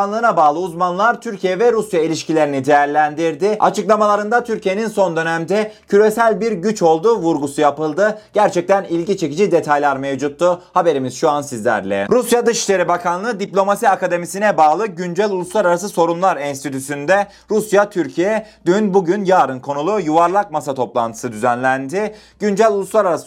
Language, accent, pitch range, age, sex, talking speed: Turkish, native, 150-205 Hz, 30-49, male, 125 wpm